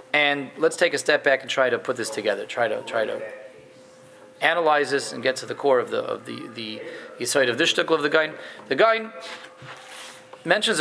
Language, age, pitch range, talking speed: English, 30-49, 130-195 Hz, 205 wpm